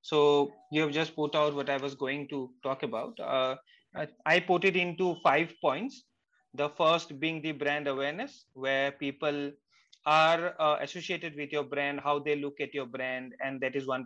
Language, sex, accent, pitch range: English, male, Indian, 145-175 Hz